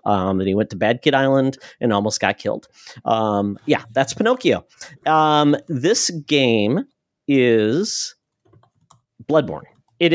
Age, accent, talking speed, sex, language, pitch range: 40-59, American, 130 wpm, male, English, 110-145 Hz